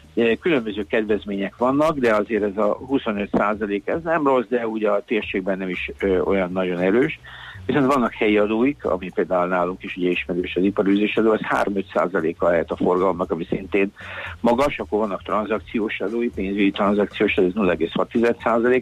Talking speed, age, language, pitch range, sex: 165 wpm, 60-79, Hungarian, 100-115 Hz, male